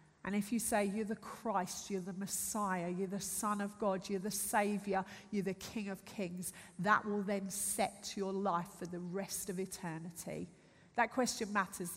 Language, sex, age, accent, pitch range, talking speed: English, female, 40-59, British, 180-215 Hz, 185 wpm